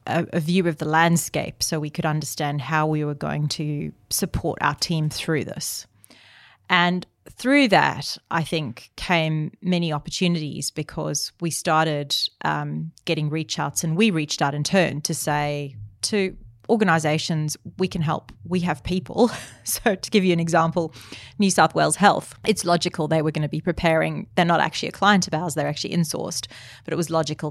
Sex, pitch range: female, 150-170 Hz